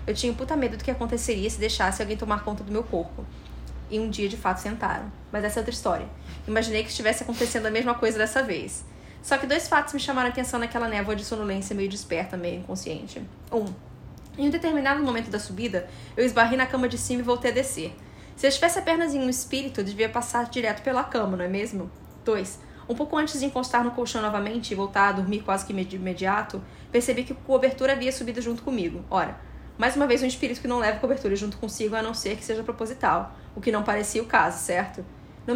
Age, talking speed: 20-39, 235 wpm